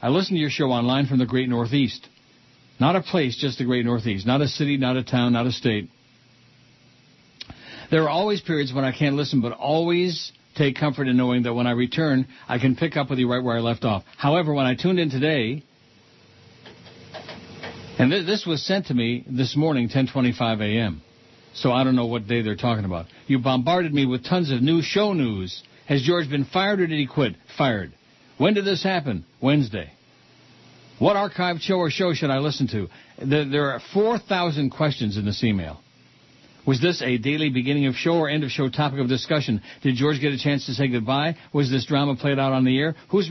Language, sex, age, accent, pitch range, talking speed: English, male, 60-79, American, 125-155 Hz, 210 wpm